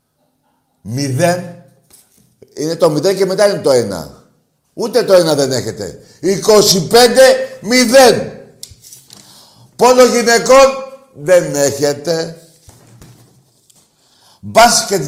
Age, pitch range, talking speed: 60-79, 125-185 Hz, 85 wpm